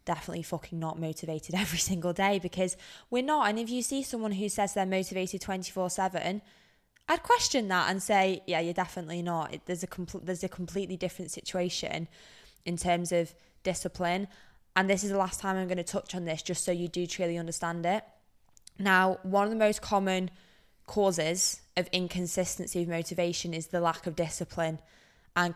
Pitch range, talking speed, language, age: 175-195 Hz, 185 wpm, English, 20-39